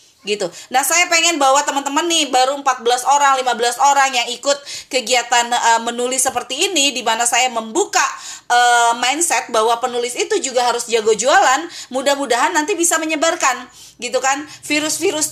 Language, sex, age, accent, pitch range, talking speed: Indonesian, female, 30-49, native, 255-340 Hz, 150 wpm